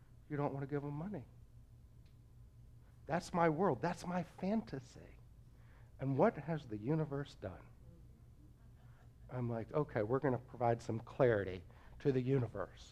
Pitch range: 120-195 Hz